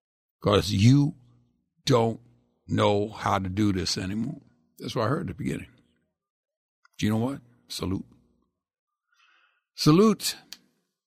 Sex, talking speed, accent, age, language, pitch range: male, 120 wpm, American, 60-79, English, 95-145 Hz